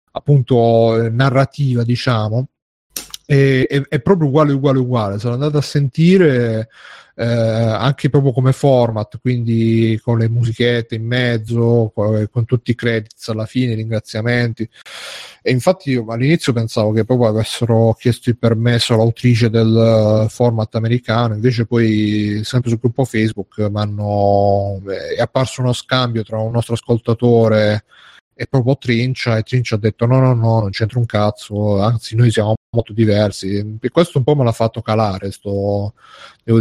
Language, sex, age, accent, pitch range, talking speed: Italian, male, 30-49, native, 110-130 Hz, 150 wpm